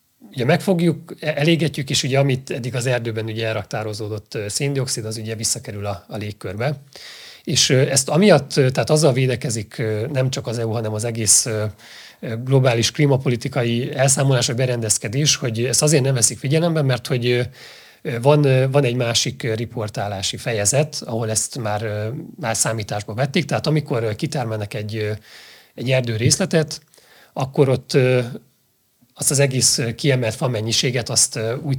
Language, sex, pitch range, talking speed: Hungarian, male, 115-145 Hz, 140 wpm